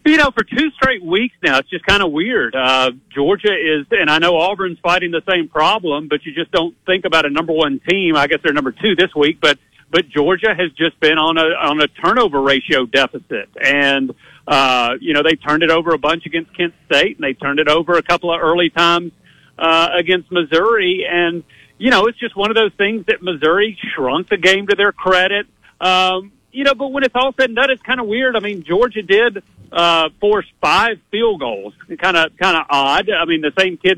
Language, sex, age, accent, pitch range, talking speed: English, male, 40-59, American, 160-215 Hz, 230 wpm